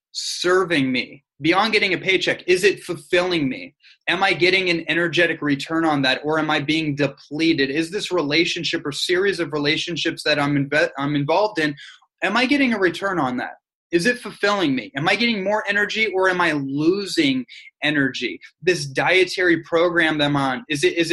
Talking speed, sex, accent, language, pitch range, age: 185 wpm, male, American, English, 150-190 Hz, 20-39